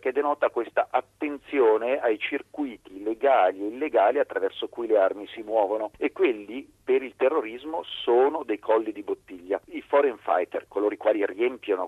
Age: 40-59